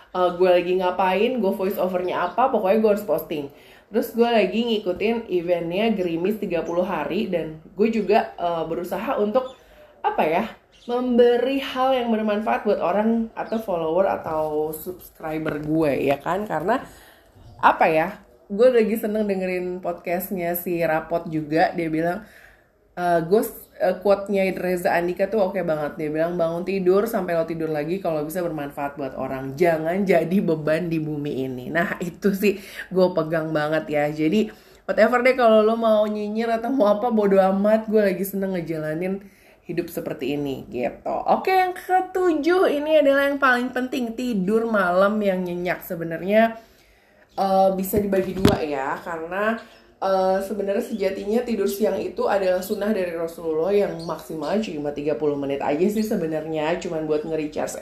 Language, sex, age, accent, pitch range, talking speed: Indonesian, female, 20-39, native, 165-220 Hz, 155 wpm